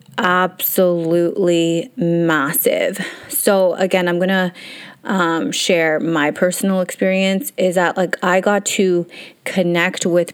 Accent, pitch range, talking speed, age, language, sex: American, 170-190 Hz, 115 wpm, 30-49, English, female